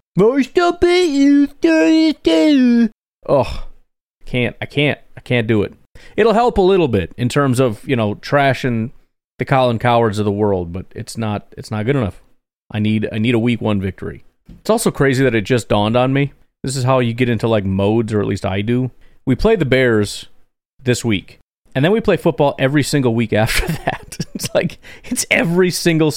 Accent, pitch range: American, 110-140 Hz